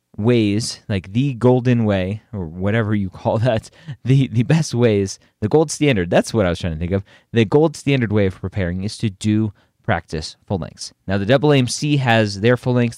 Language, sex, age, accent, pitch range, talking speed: English, male, 30-49, American, 90-125 Hz, 210 wpm